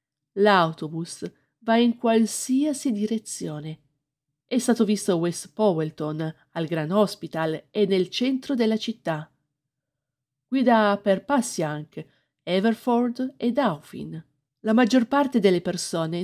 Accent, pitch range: native, 150-210 Hz